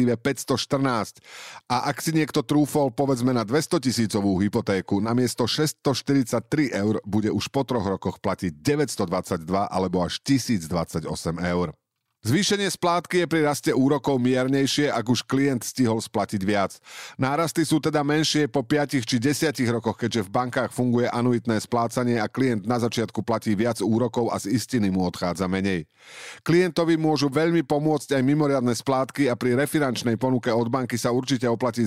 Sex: male